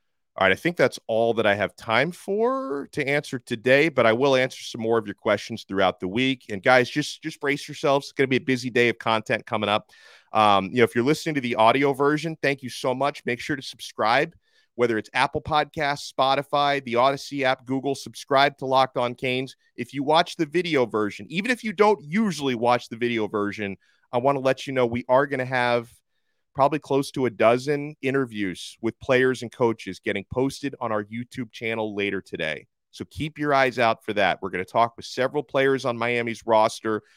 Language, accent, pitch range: English, American, 115-140 Hz